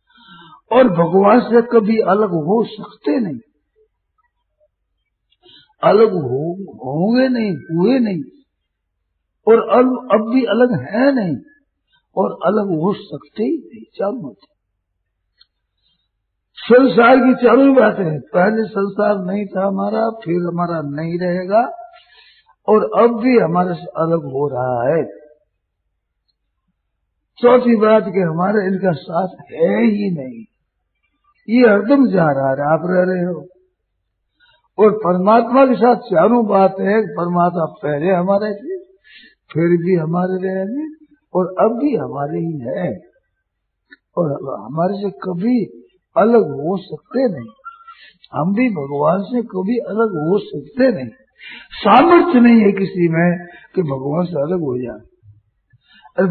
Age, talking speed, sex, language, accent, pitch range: 50-69, 125 wpm, male, Hindi, native, 170-240 Hz